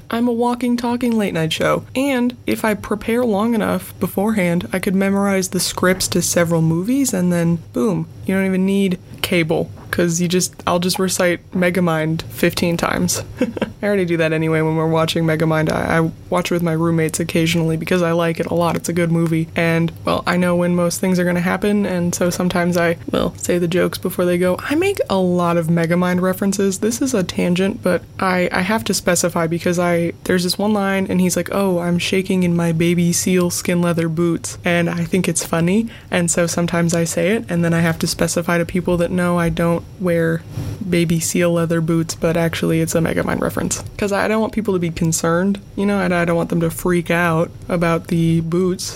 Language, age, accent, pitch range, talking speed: English, 20-39, American, 170-195 Hz, 220 wpm